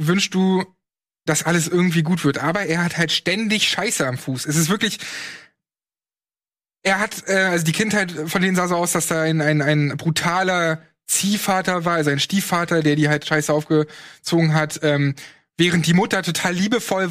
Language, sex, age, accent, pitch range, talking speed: German, male, 20-39, German, 155-185 Hz, 180 wpm